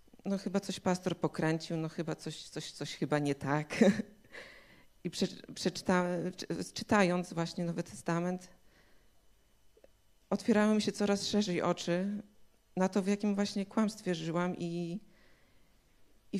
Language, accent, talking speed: Polish, native, 120 wpm